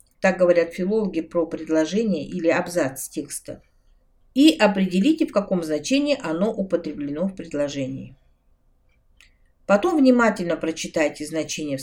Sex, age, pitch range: female, 50-69, 160-235 Hz